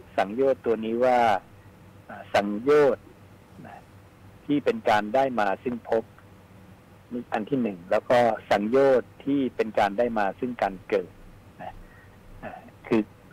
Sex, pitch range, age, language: male, 100-125 Hz, 60-79, Thai